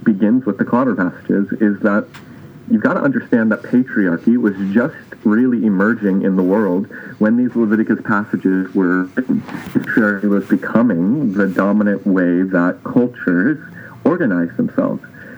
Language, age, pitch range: English, 40-59, 95-115 Hz